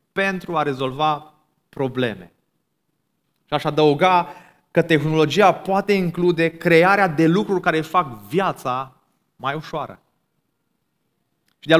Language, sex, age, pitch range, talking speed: Romanian, male, 30-49, 150-185 Hz, 105 wpm